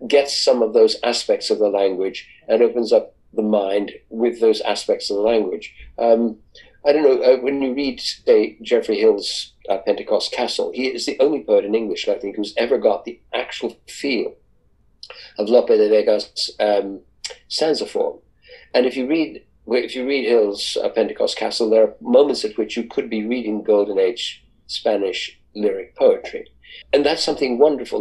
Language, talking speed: English, 180 wpm